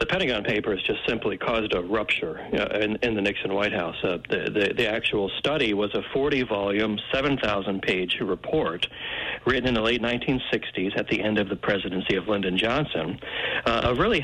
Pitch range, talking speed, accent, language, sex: 100-125 Hz, 180 wpm, American, English, male